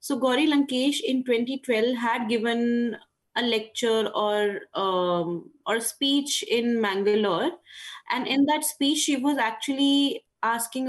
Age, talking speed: 20-39, 120 wpm